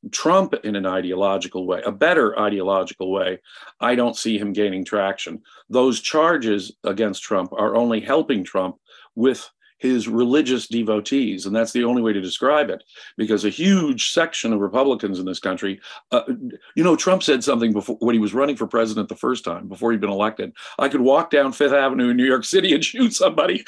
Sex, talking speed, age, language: male, 195 wpm, 50-69, English